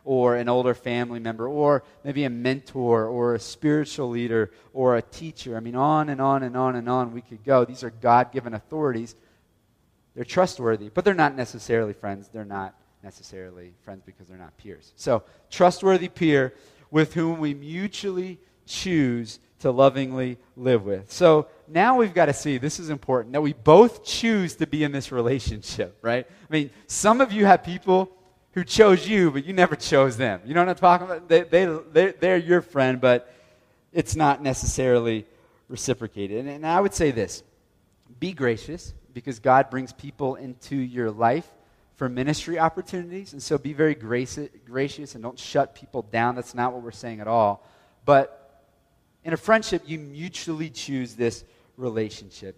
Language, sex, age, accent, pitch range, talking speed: English, male, 30-49, American, 115-155 Hz, 175 wpm